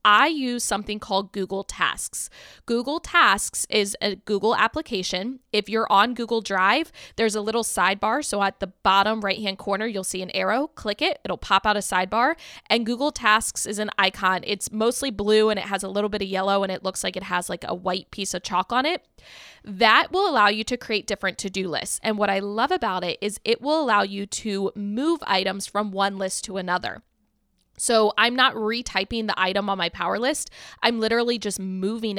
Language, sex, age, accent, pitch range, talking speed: English, female, 20-39, American, 195-235 Hz, 205 wpm